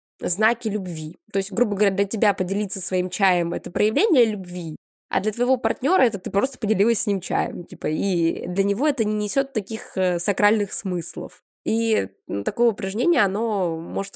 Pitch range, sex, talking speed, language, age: 180-220 Hz, female, 170 wpm, Russian, 20-39